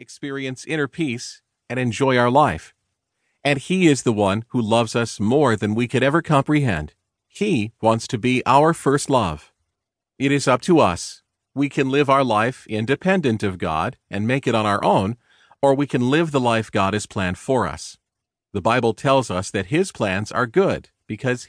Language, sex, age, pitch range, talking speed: English, male, 40-59, 105-140 Hz, 190 wpm